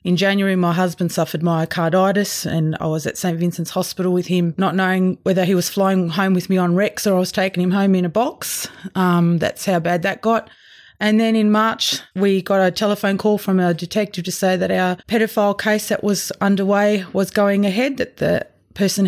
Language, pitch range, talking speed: English, 175-205 Hz, 215 wpm